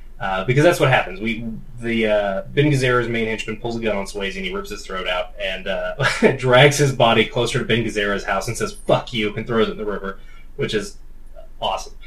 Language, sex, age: English, male, 20-39